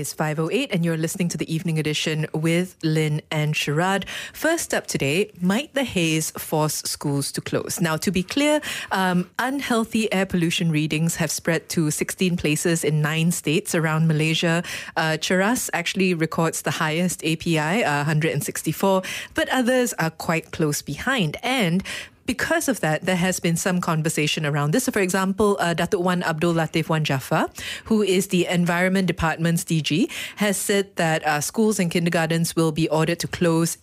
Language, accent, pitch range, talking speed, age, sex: English, Malaysian, 155-185 Hz, 170 wpm, 20-39, female